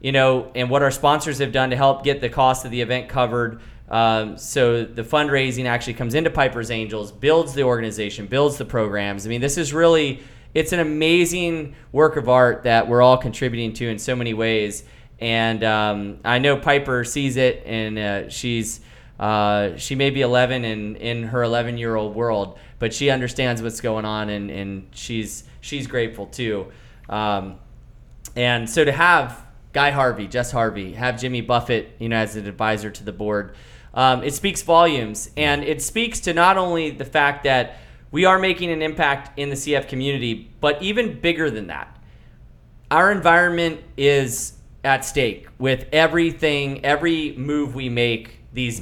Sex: male